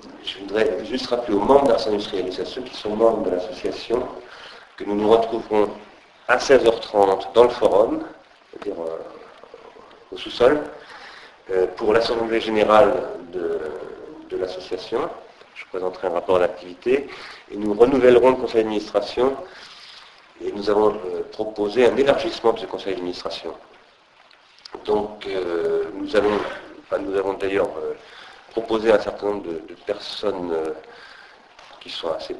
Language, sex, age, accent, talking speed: French, male, 50-69, French, 135 wpm